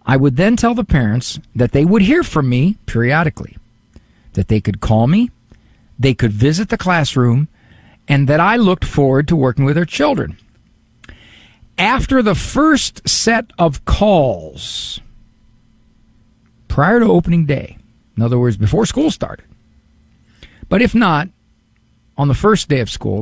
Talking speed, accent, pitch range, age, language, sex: 150 wpm, American, 115-185 Hz, 50-69, English, male